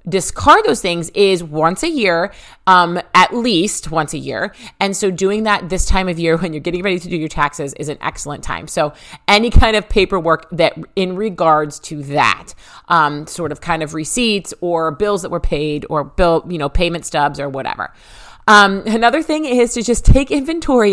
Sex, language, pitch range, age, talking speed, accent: female, English, 165-225 Hz, 30-49, 200 wpm, American